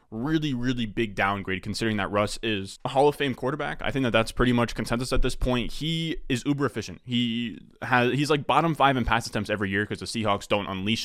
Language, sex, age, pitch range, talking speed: English, male, 20-39, 100-125 Hz, 235 wpm